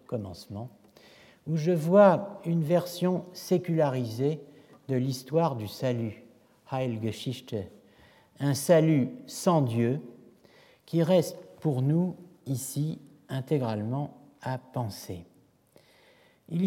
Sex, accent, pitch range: male, French, 115-160 Hz